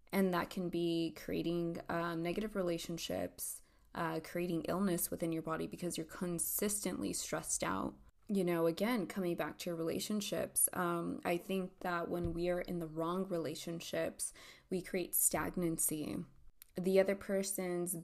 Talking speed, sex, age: 145 wpm, female, 20-39